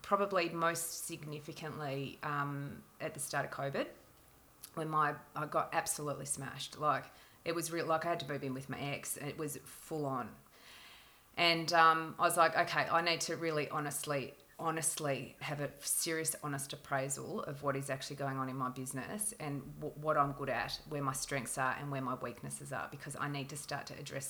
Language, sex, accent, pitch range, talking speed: English, female, Australian, 140-170 Hz, 200 wpm